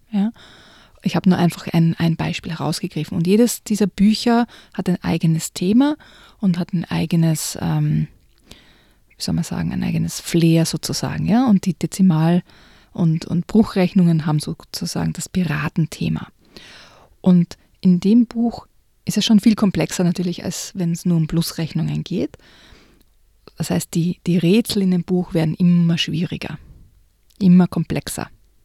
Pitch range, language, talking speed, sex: 165-195 Hz, German, 150 wpm, female